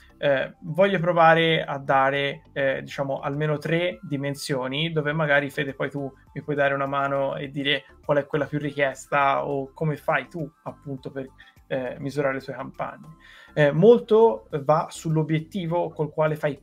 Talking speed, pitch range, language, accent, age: 160 wpm, 135-160 Hz, Italian, native, 30-49